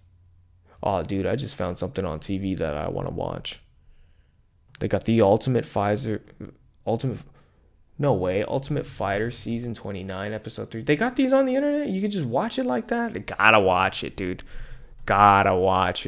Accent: American